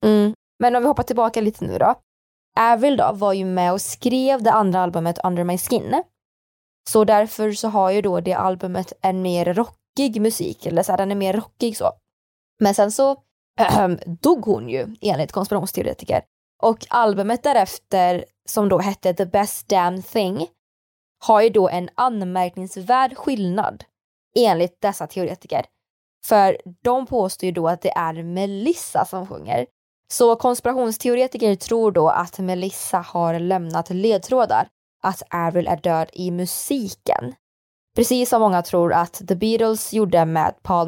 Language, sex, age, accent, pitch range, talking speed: Swedish, female, 20-39, native, 180-225 Hz, 155 wpm